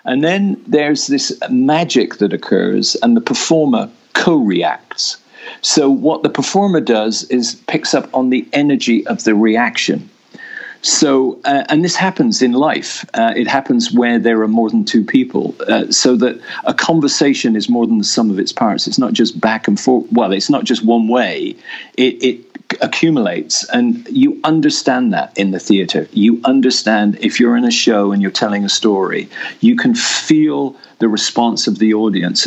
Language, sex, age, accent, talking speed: English, male, 50-69, British, 180 wpm